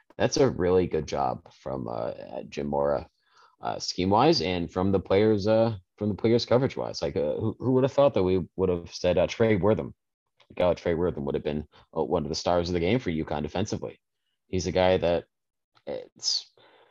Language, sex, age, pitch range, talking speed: English, male, 30-49, 80-105 Hz, 210 wpm